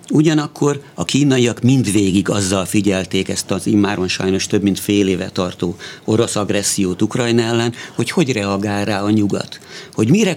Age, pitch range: 50-69, 100-120 Hz